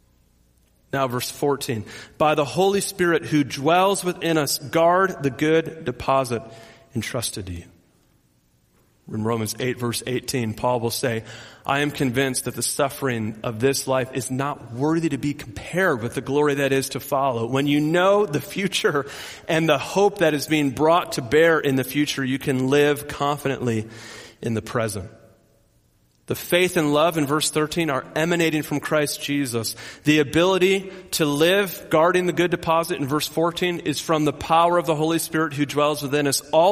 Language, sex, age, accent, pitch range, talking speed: English, male, 40-59, American, 110-155 Hz, 175 wpm